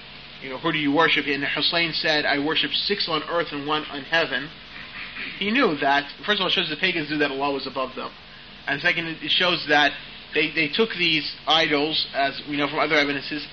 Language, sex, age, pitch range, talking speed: English, male, 40-59, 145-170 Hz, 220 wpm